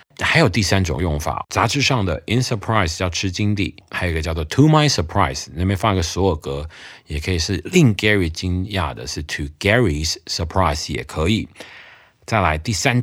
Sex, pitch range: male, 80-105 Hz